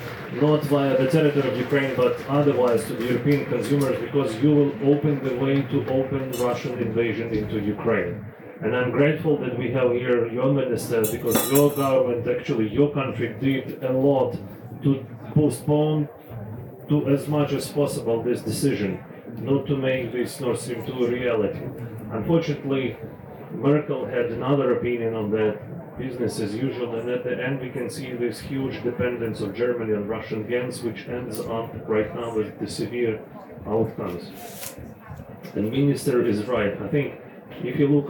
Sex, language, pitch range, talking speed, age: male, Danish, 120-140 Hz, 160 wpm, 30-49